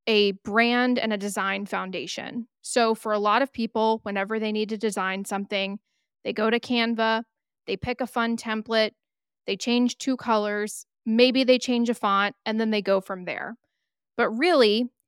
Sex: female